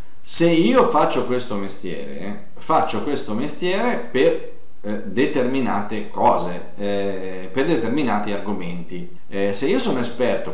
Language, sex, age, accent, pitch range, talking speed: Italian, male, 30-49, native, 100-125 Hz, 120 wpm